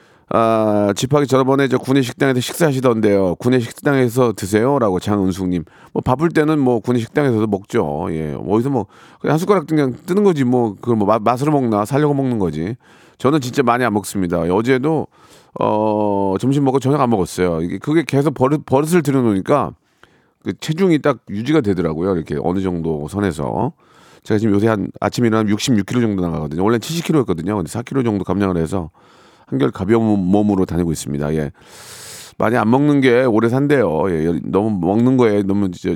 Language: Korean